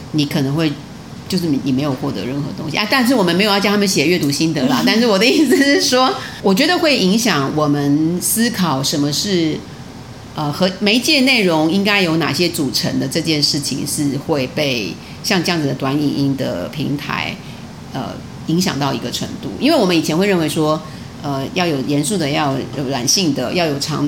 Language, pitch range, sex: Chinese, 145-200 Hz, female